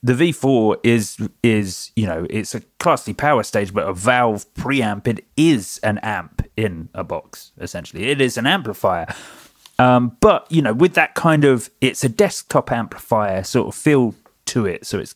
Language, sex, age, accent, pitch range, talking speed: English, male, 30-49, British, 105-130 Hz, 180 wpm